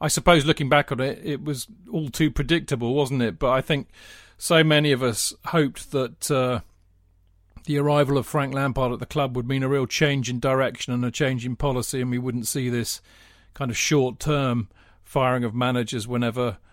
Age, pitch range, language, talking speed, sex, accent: 40-59, 125-145 Hz, English, 195 wpm, male, British